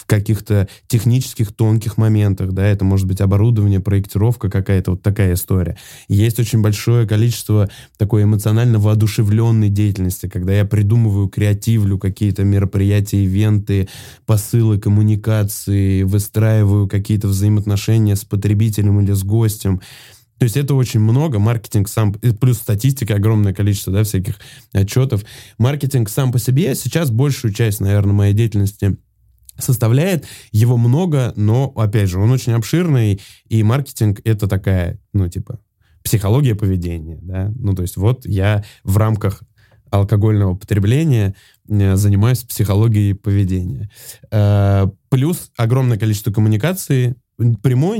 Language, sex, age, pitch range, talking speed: Russian, male, 20-39, 100-120 Hz, 125 wpm